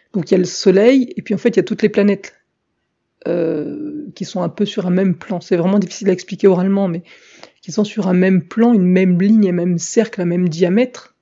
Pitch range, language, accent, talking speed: 180-210 Hz, French, French, 250 wpm